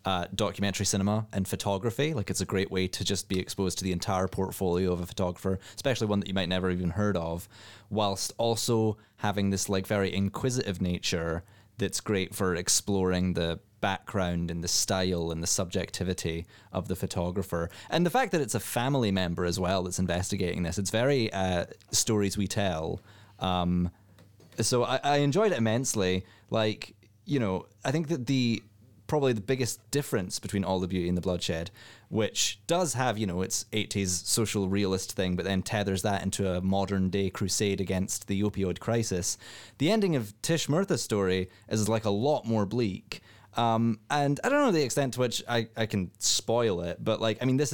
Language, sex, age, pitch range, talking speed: English, male, 20-39, 95-115 Hz, 190 wpm